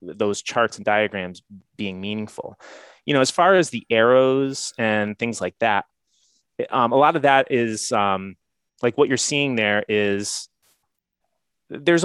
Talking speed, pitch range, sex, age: 155 wpm, 105-140 Hz, male, 30-49